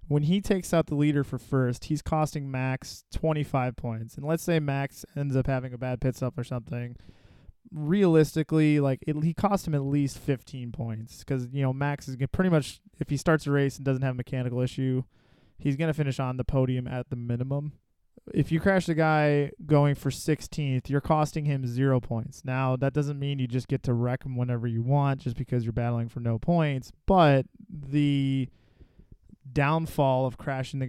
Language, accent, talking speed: English, American, 200 wpm